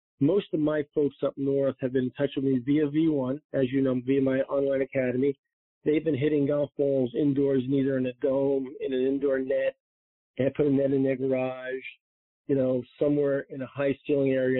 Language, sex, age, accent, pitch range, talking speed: English, male, 40-59, American, 130-145 Hz, 205 wpm